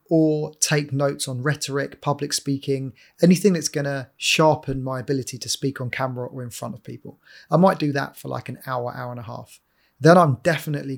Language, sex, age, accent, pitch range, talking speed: English, male, 30-49, British, 130-150 Hz, 210 wpm